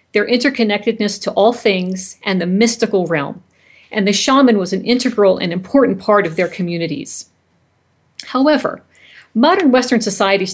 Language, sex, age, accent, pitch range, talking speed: English, female, 50-69, American, 185-235 Hz, 140 wpm